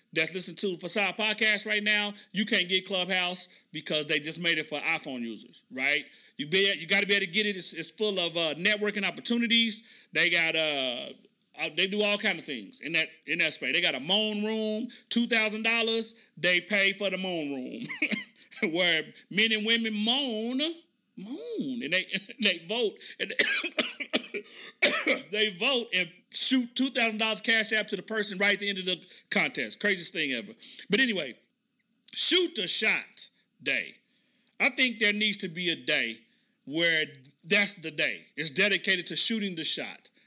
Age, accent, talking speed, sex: 40-59, American, 180 wpm, male